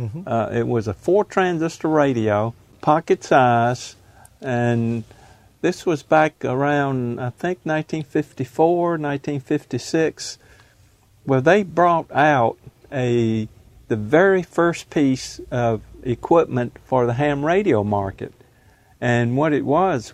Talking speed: 110 wpm